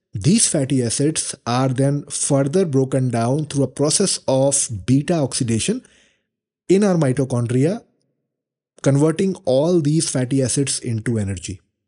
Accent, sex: Indian, male